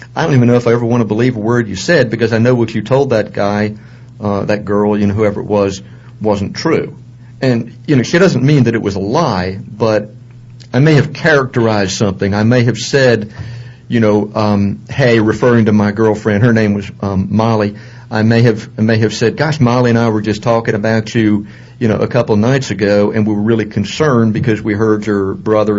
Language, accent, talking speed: English, American, 230 wpm